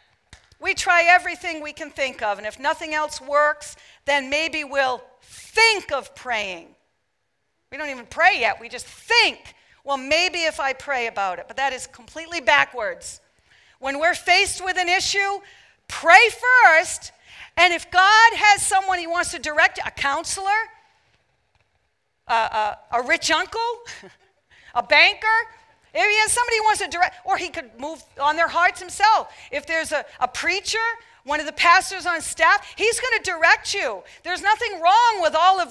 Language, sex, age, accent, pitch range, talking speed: English, female, 40-59, American, 285-385 Hz, 170 wpm